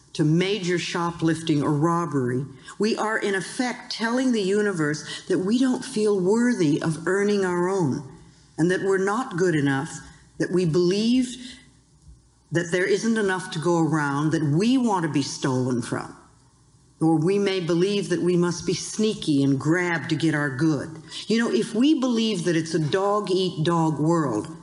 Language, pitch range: English, 150-195 Hz